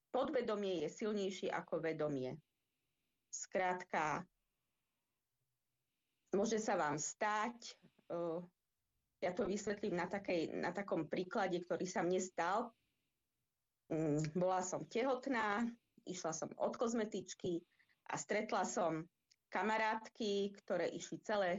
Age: 30-49